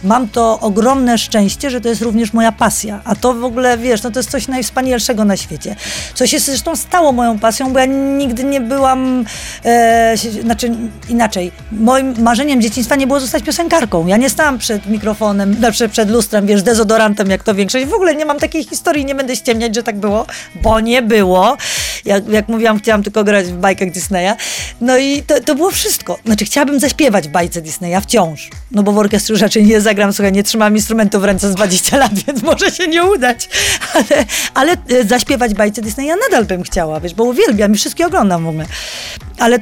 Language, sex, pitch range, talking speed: Polish, female, 215-275 Hz, 200 wpm